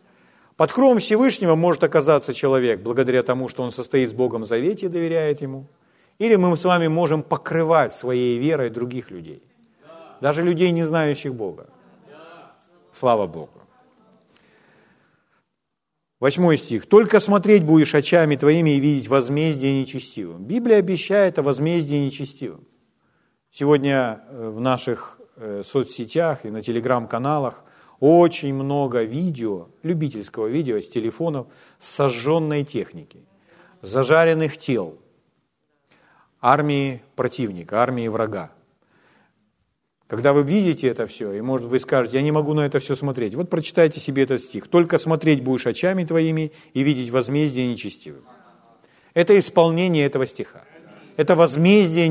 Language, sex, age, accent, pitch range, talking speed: Ukrainian, male, 40-59, native, 130-170 Hz, 125 wpm